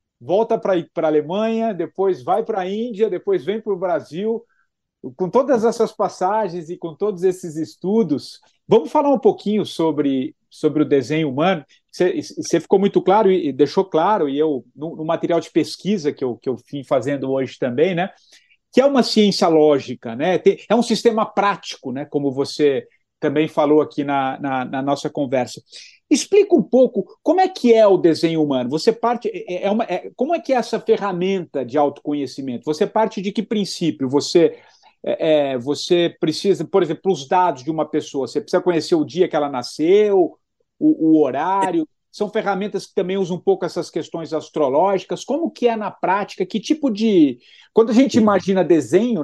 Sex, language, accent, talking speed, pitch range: male, Portuguese, Brazilian, 185 wpm, 155-220 Hz